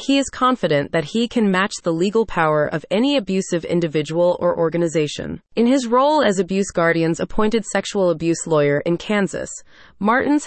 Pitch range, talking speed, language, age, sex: 170-230 Hz, 165 wpm, English, 30-49, female